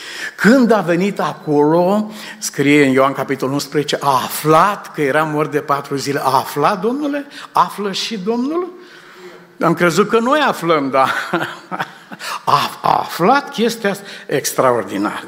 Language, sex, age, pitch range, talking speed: Romanian, male, 60-79, 135-200 Hz, 135 wpm